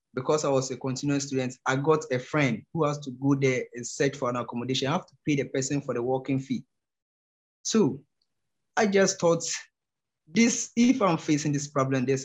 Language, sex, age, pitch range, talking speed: English, male, 20-39, 130-150 Hz, 200 wpm